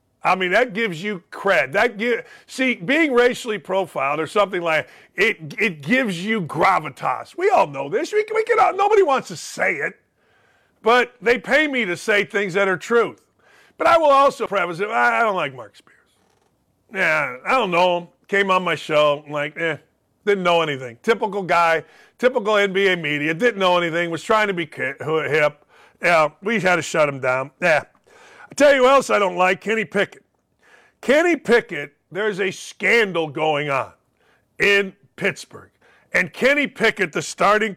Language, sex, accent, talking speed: English, male, American, 180 wpm